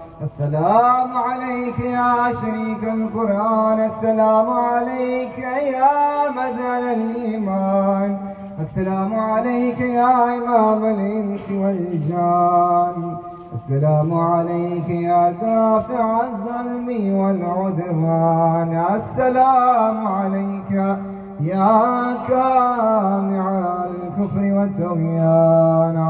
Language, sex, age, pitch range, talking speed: Urdu, male, 20-39, 175-225 Hz, 65 wpm